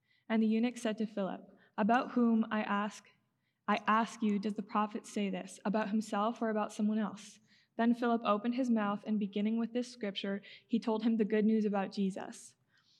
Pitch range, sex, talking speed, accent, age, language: 200-225 Hz, female, 195 wpm, American, 20-39, English